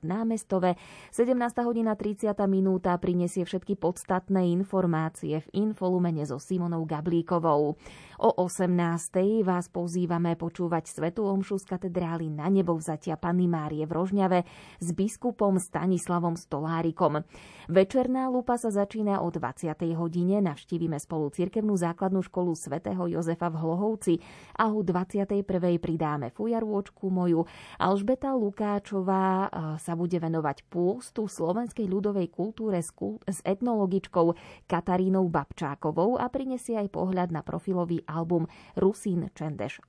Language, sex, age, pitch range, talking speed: Slovak, female, 20-39, 165-195 Hz, 115 wpm